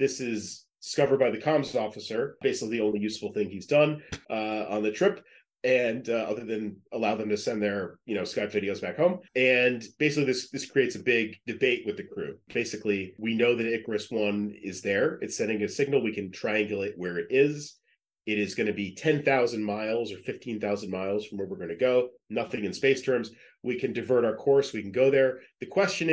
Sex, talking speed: male, 220 wpm